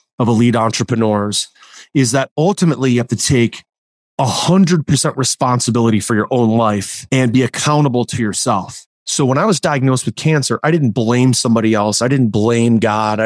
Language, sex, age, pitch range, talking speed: English, male, 30-49, 115-145 Hz, 165 wpm